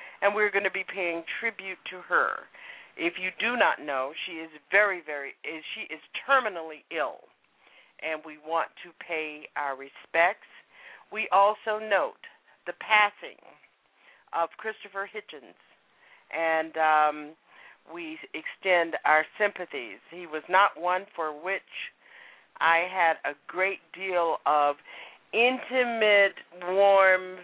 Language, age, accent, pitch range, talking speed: English, 50-69, American, 160-220 Hz, 125 wpm